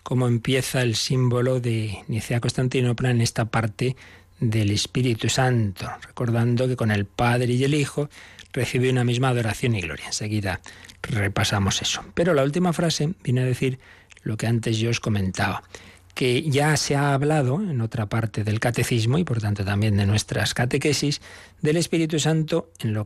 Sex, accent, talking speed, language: male, Spanish, 170 wpm, Spanish